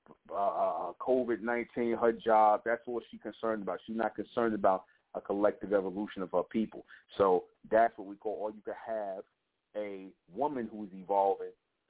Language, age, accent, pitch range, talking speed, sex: English, 30-49, American, 105-120 Hz, 160 wpm, male